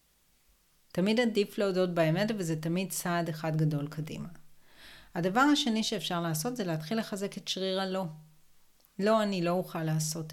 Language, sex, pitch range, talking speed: Hebrew, female, 155-185 Hz, 145 wpm